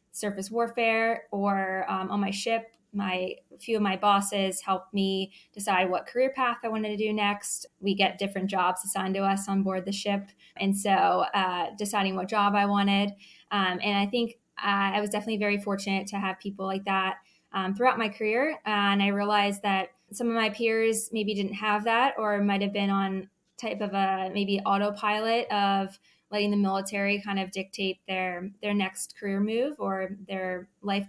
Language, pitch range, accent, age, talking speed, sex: English, 195-215 Hz, American, 20-39, 195 wpm, female